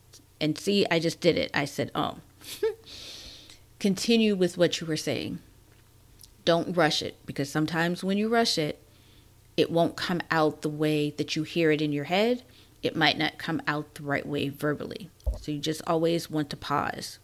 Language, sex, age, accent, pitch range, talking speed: English, female, 40-59, American, 115-185 Hz, 190 wpm